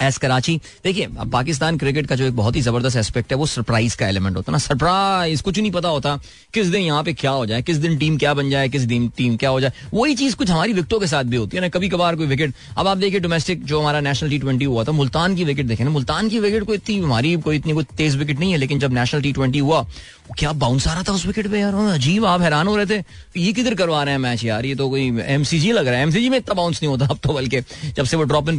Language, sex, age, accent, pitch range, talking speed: Hindi, male, 20-39, native, 125-180 Hz, 270 wpm